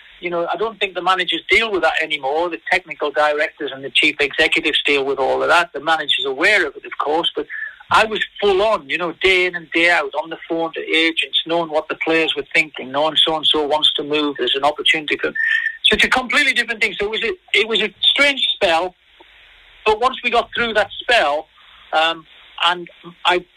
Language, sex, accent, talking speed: English, male, British, 225 wpm